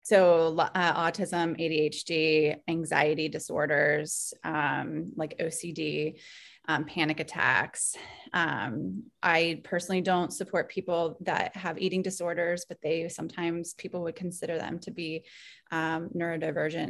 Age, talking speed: 20-39, 115 wpm